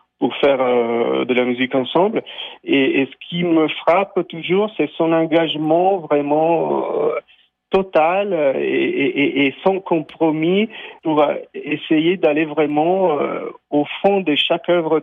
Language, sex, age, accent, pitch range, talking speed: French, male, 40-59, French, 135-165 Hz, 140 wpm